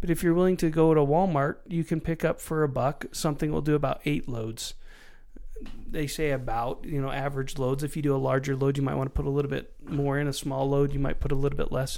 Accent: American